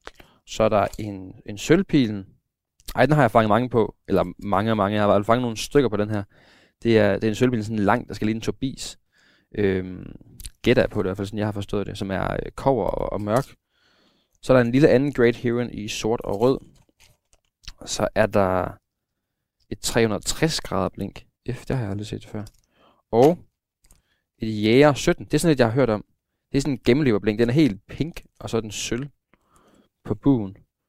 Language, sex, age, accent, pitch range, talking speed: Danish, male, 20-39, native, 105-125 Hz, 220 wpm